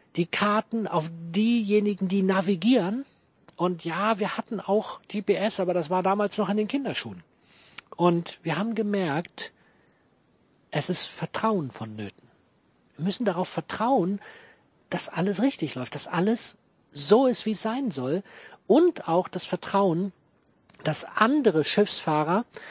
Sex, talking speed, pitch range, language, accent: male, 135 wpm, 160-205 Hz, German, German